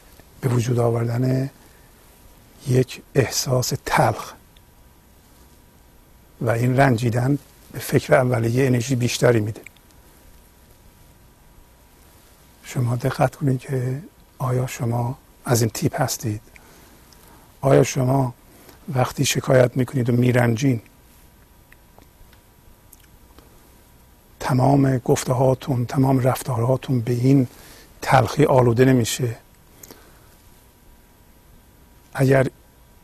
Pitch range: 120-140 Hz